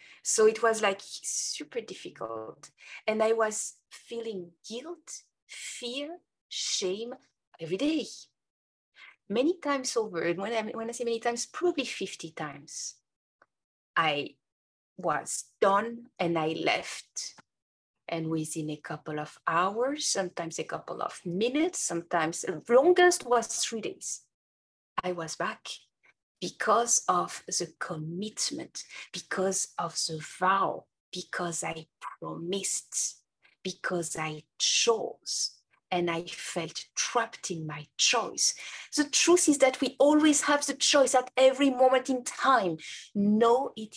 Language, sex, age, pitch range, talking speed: English, female, 30-49, 175-255 Hz, 125 wpm